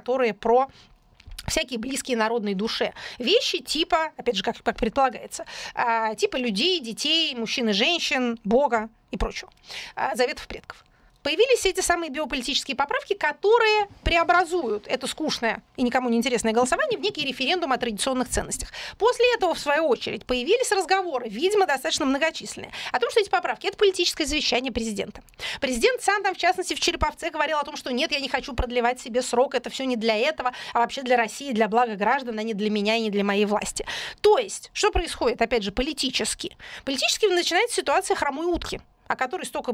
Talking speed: 180 wpm